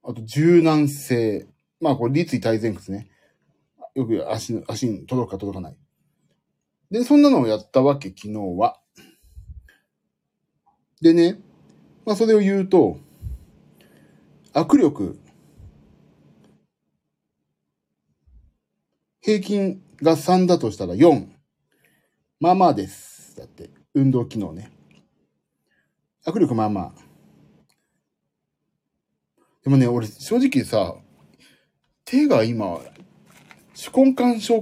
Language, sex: Japanese, male